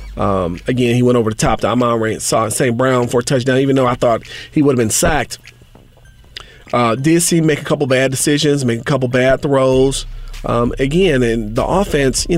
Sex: male